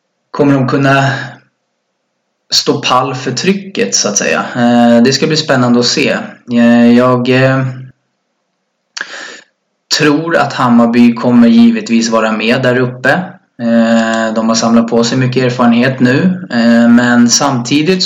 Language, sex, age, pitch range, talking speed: English, male, 20-39, 115-140 Hz, 120 wpm